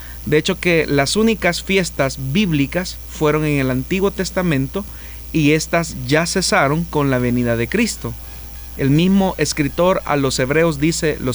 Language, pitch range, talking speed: Spanish, 135-175 Hz, 155 wpm